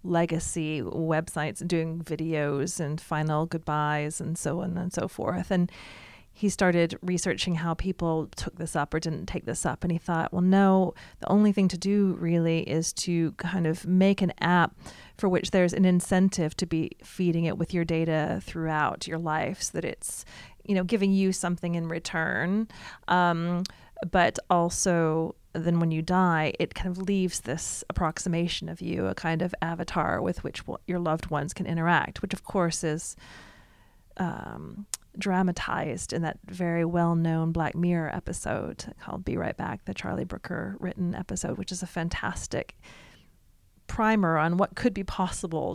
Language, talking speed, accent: English, 170 wpm, American